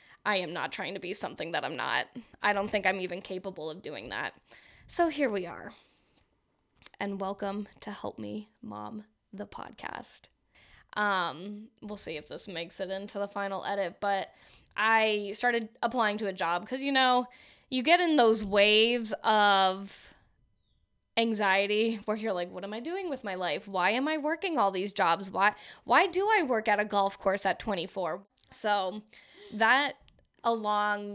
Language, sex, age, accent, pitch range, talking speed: English, female, 10-29, American, 190-230 Hz, 175 wpm